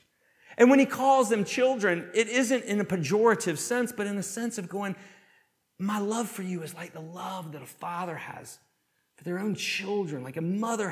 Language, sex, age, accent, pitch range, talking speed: English, male, 40-59, American, 145-210 Hz, 205 wpm